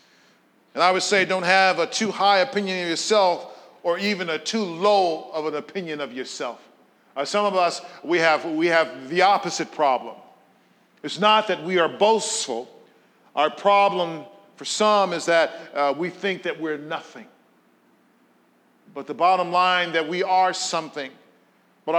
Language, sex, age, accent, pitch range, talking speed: English, male, 50-69, American, 170-245 Hz, 160 wpm